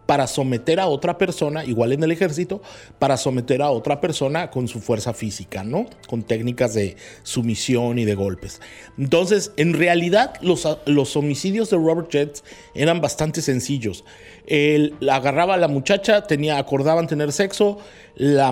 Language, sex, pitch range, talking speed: Spanish, male, 130-180 Hz, 155 wpm